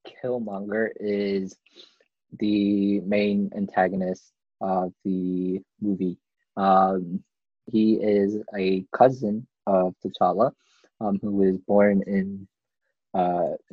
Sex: male